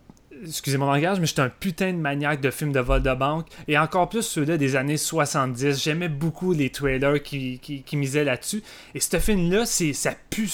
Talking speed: 210 wpm